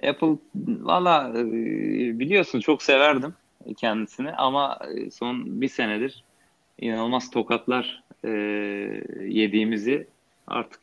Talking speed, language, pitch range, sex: 85 wpm, Turkish, 100-120 Hz, male